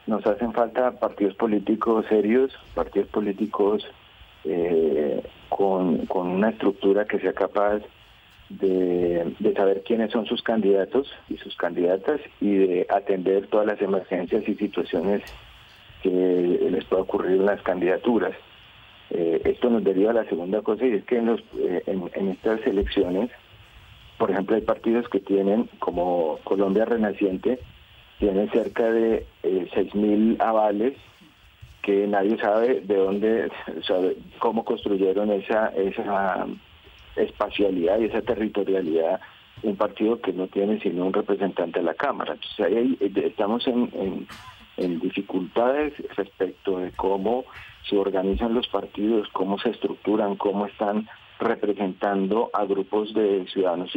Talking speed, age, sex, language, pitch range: 140 wpm, 50-69, male, Spanish, 95-115 Hz